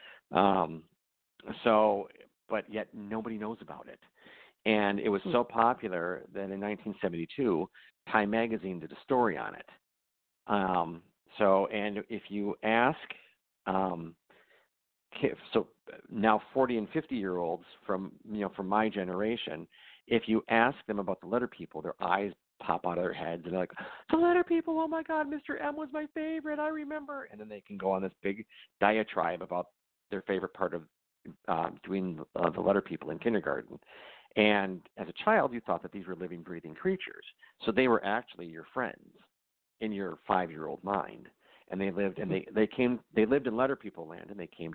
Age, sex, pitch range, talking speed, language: 50-69, male, 95-120 Hz, 180 wpm, English